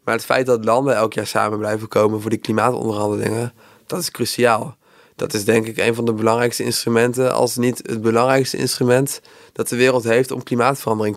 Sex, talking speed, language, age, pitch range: male, 195 wpm, Dutch, 20-39, 110-125 Hz